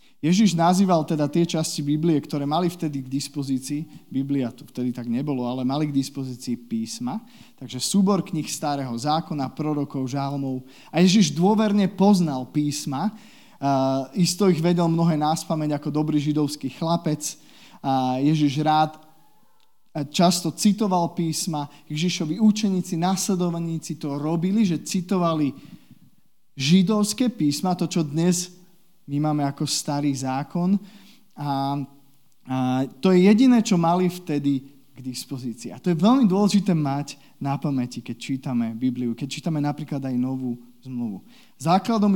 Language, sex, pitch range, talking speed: Slovak, male, 140-195 Hz, 130 wpm